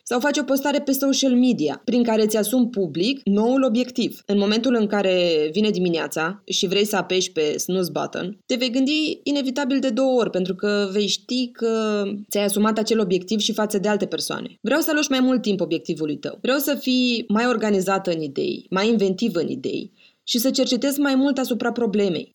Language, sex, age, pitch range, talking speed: Romanian, female, 20-39, 190-255 Hz, 195 wpm